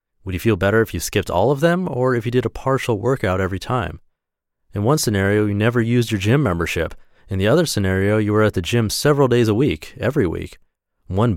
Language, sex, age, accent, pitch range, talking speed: English, male, 30-49, American, 90-120 Hz, 230 wpm